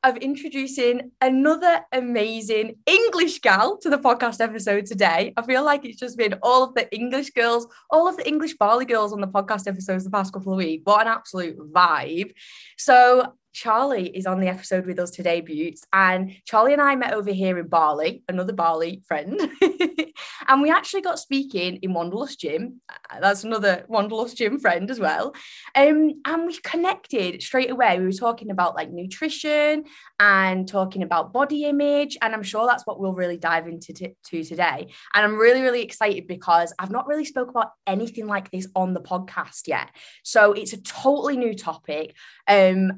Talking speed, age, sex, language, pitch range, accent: 185 wpm, 20-39, female, English, 185-260 Hz, British